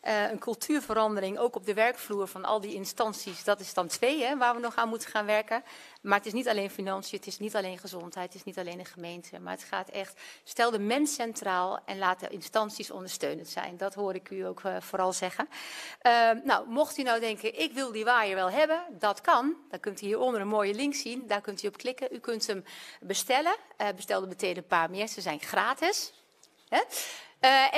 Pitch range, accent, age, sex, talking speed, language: 195-245 Hz, Dutch, 40-59, female, 225 wpm, Dutch